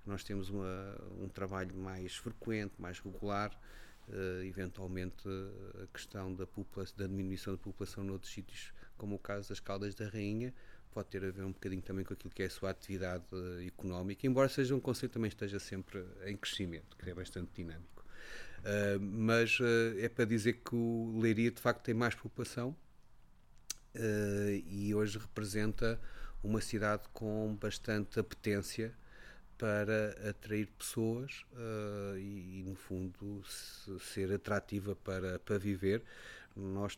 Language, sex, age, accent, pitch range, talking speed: English, male, 30-49, Portuguese, 95-105 Hz, 155 wpm